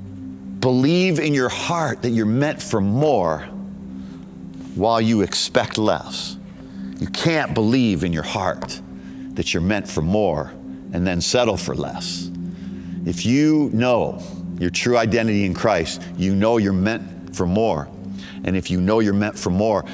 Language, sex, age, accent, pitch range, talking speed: English, male, 50-69, American, 90-115 Hz, 155 wpm